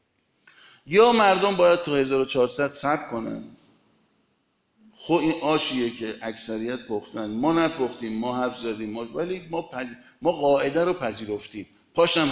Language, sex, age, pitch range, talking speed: Arabic, male, 50-69, 110-165 Hz, 130 wpm